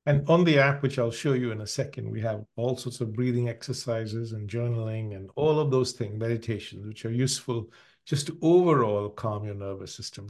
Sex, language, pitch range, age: male, English, 110-140 Hz, 50-69